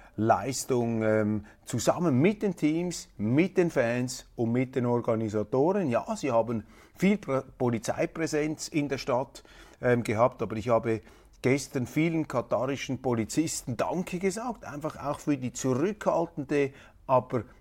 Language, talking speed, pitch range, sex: German, 130 wpm, 120-155 Hz, male